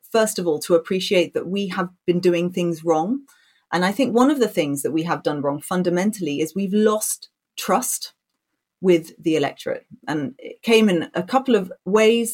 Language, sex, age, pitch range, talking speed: English, female, 30-49, 165-205 Hz, 195 wpm